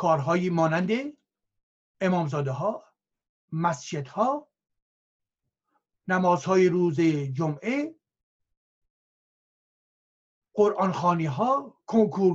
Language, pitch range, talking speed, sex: Persian, 145-185 Hz, 50 wpm, male